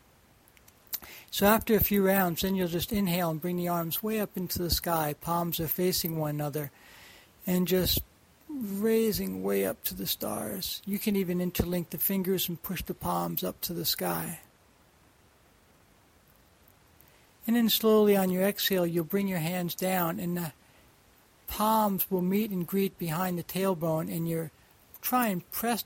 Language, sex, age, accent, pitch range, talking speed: English, male, 60-79, American, 170-195 Hz, 165 wpm